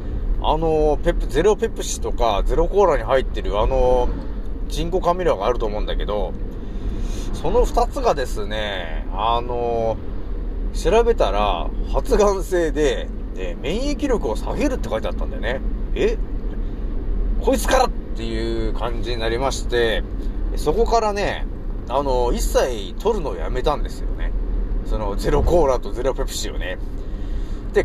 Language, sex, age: Japanese, male, 30-49